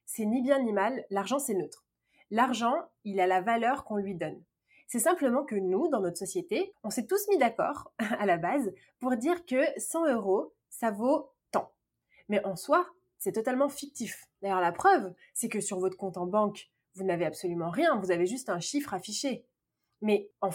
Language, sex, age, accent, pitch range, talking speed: French, female, 20-39, French, 195-275 Hz, 195 wpm